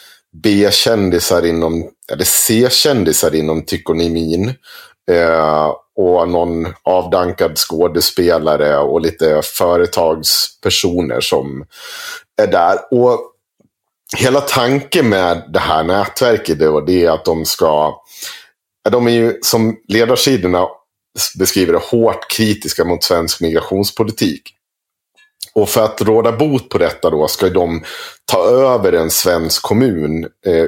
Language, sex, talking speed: Swedish, male, 110 wpm